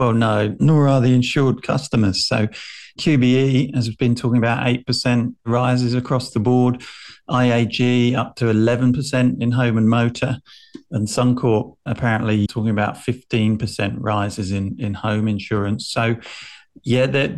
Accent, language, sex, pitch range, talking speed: British, English, male, 110-125 Hz, 140 wpm